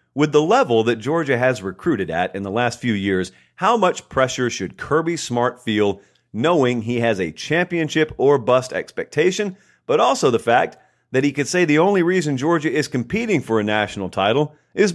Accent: American